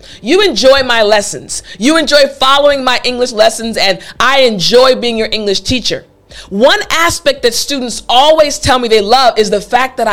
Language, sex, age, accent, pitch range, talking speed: English, female, 40-59, American, 205-295 Hz, 180 wpm